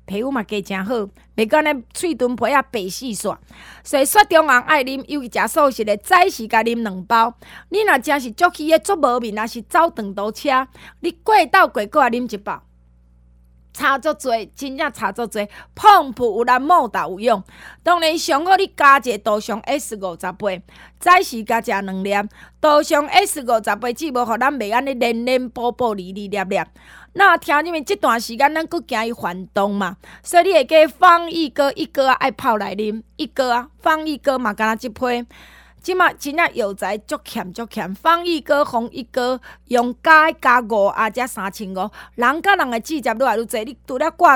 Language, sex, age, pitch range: Chinese, female, 20-39, 220-305 Hz